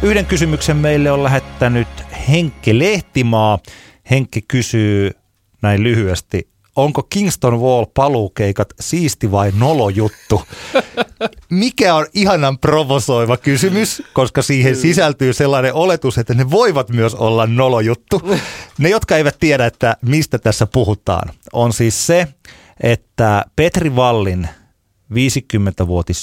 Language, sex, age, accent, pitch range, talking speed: Finnish, male, 30-49, native, 95-135 Hz, 110 wpm